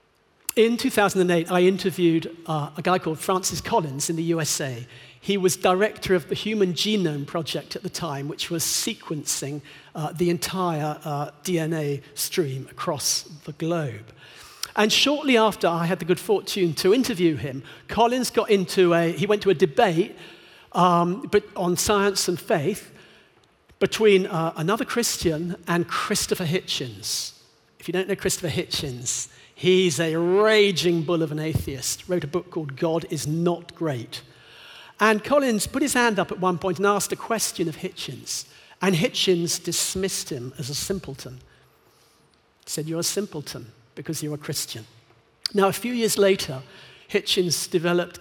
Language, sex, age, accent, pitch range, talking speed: English, male, 50-69, British, 155-195 Hz, 155 wpm